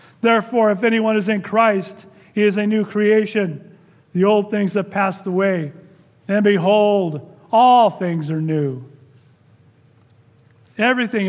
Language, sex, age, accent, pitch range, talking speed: English, male, 40-59, American, 155-210 Hz, 130 wpm